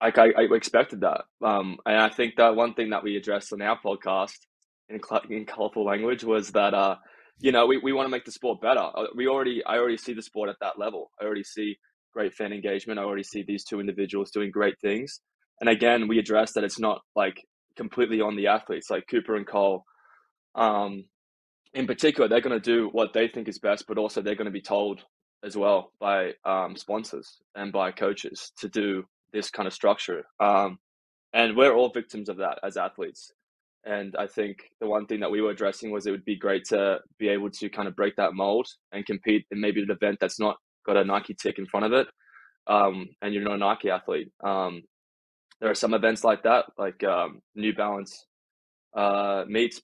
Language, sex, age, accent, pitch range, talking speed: English, male, 20-39, Australian, 100-110 Hz, 215 wpm